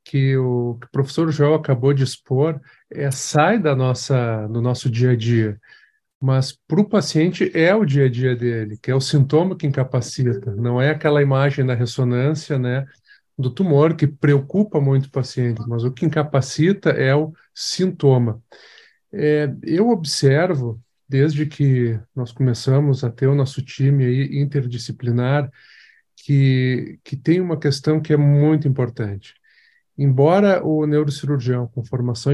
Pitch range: 125-145 Hz